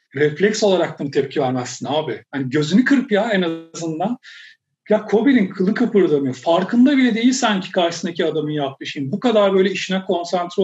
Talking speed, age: 165 wpm, 40-59